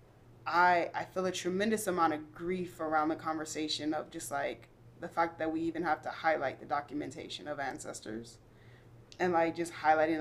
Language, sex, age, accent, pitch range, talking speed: English, female, 20-39, American, 120-180 Hz, 175 wpm